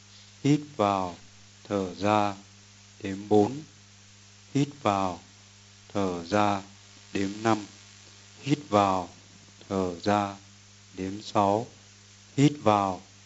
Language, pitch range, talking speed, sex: Vietnamese, 100-115 Hz, 90 wpm, male